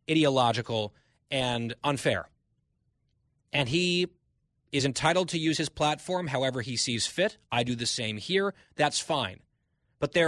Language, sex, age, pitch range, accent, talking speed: English, male, 30-49, 125-160 Hz, American, 140 wpm